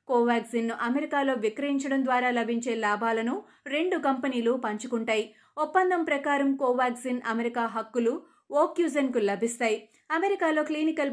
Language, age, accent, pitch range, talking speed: Telugu, 30-49, native, 230-275 Hz, 100 wpm